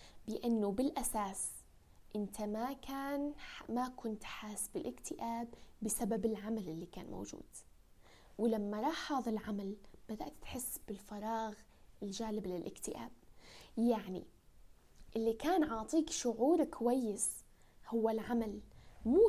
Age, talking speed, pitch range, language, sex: 10-29, 100 wpm, 215-255 Hz, Arabic, female